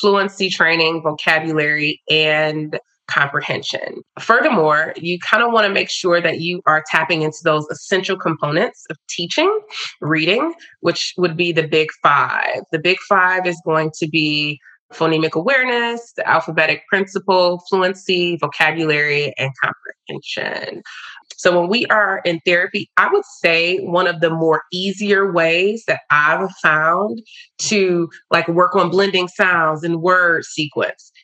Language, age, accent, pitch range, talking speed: English, 20-39, American, 160-195 Hz, 140 wpm